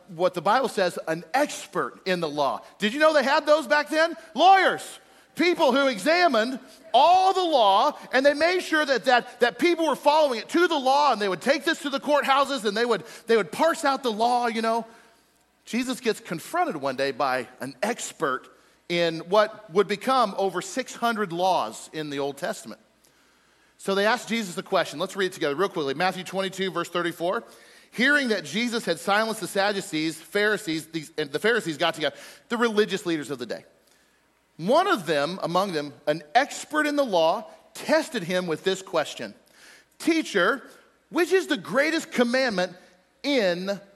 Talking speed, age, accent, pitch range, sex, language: 185 wpm, 40-59, American, 180-270 Hz, male, English